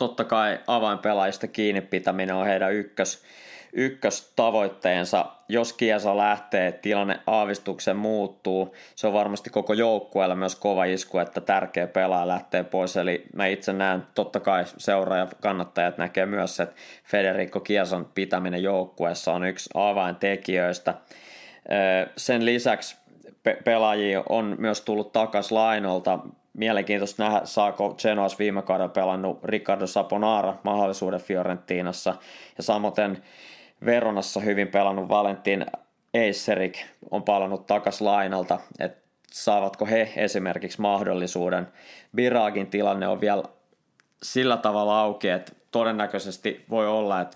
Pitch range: 95-105 Hz